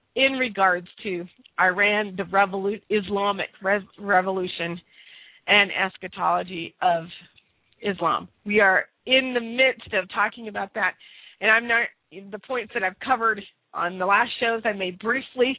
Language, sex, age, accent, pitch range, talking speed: English, female, 40-59, American, 185-235 Hz, 140 wpm